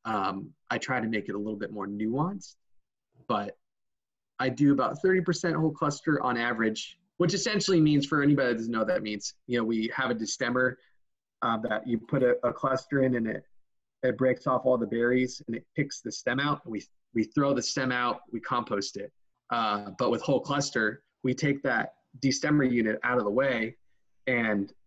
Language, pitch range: English, 120-155 Hz